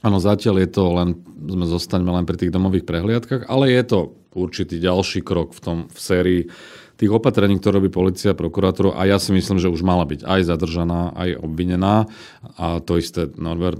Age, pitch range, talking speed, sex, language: 40-59, 85-105 Hz, 190 wpm, male, Slovak